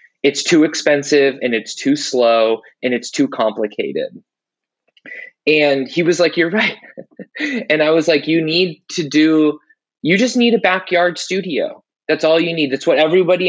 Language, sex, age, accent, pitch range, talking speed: English, male, 20-39, American, 130-160 Hz, 170 wpm